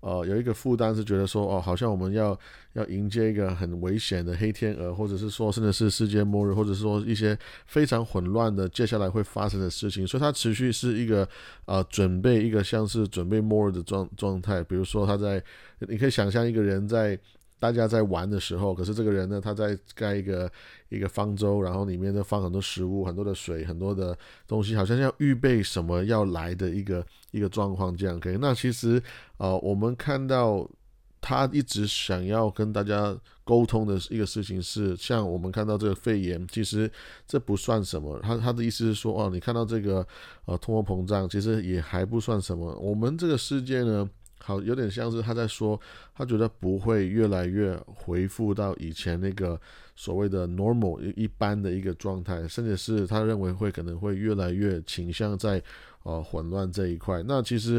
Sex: male